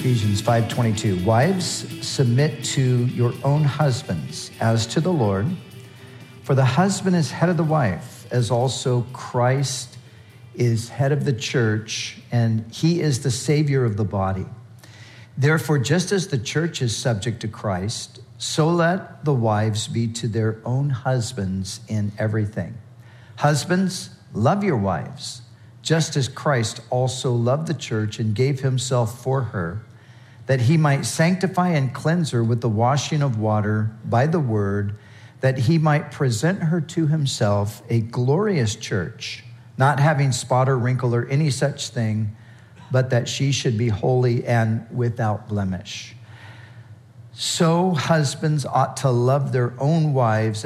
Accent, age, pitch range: American, 50-69, 115-145 Hz